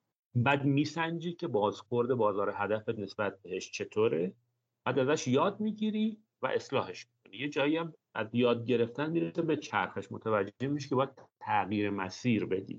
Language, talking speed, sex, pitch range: Persian, 165 wpm, male, 115-165 Hz